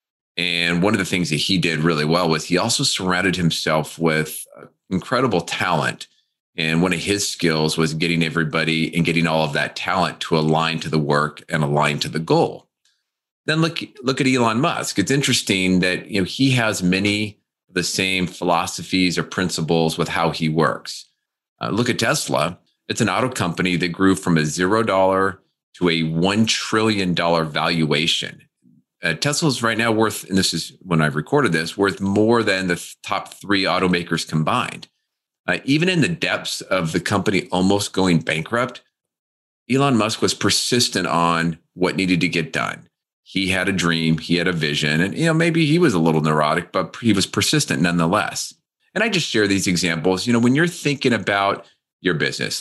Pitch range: 80-105 Hz